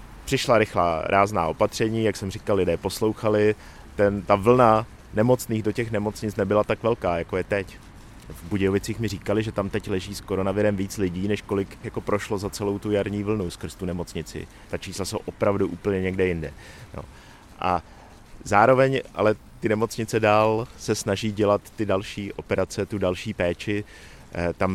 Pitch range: 95-110 Hz